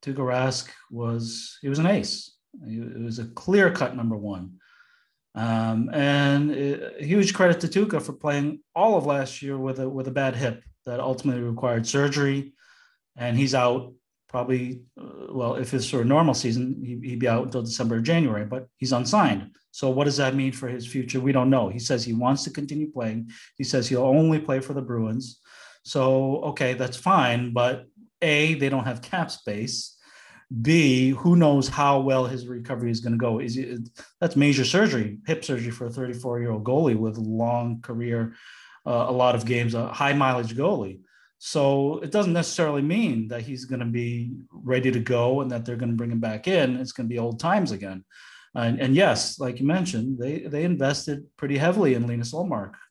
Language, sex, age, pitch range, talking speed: English, male, 30-49, 120-145 Hz, 195 wpm